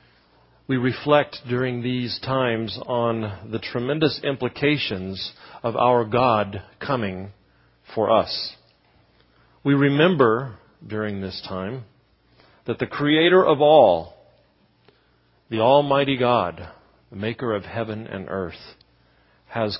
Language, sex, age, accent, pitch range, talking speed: English, male, 40-59, American, 95-130 Hz, 105 wpm